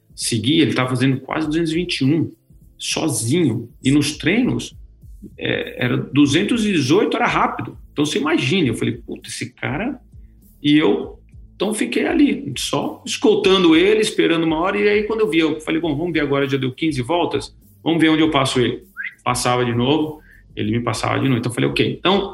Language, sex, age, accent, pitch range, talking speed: Portuguese, male, 40-59, Brazilian, 120-155 Hz, 185 wpm